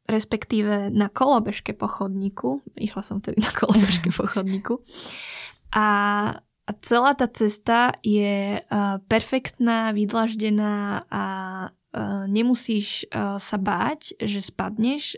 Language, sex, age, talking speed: Slovak, female, 20-39, 90 wpm